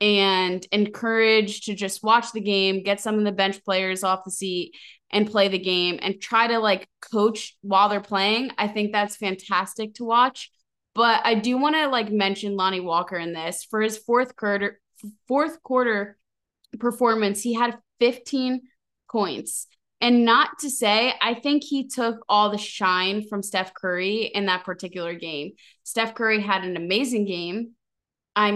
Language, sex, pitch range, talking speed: English, female, 195-230 Hz, 170 wpm